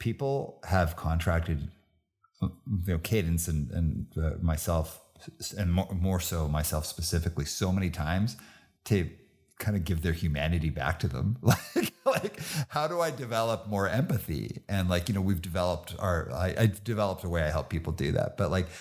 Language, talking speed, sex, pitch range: English, 165 wpm, male, 80-100 Hz